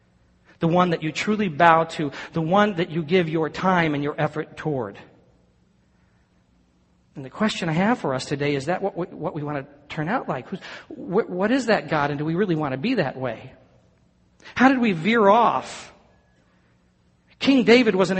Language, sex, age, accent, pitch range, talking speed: English, male, 50-69, American, 155-230 Hz, 195 wpm